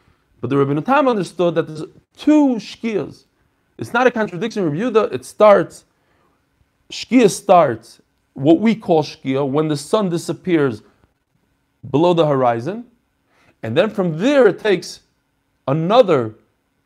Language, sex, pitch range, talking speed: English, male, 150-215 Hz, 130 wpm